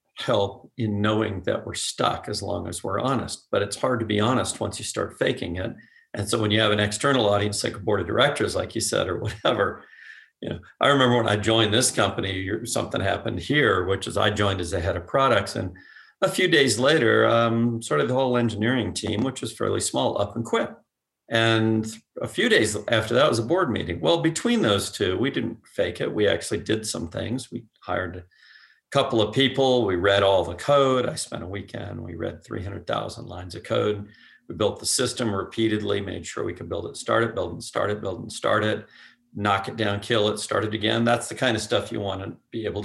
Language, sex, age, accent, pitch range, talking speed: English, male, 50-69, American, 100-125 Hz, 225 wpm